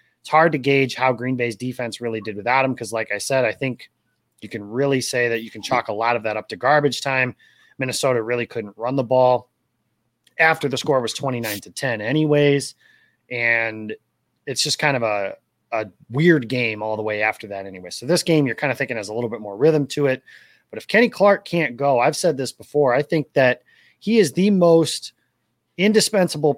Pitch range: 115-150 Hz